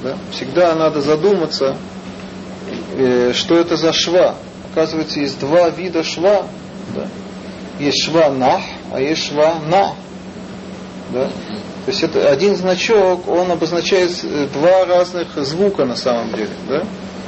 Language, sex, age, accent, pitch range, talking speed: Russian, male, 30-49, native, 140-180 Hz, 110 wpm